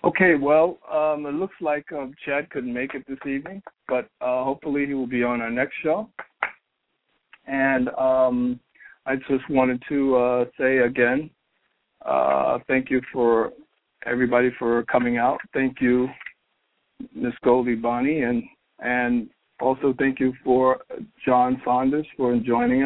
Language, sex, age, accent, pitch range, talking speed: English, male, 60-79, American, 125-145 Hz, 145 wpm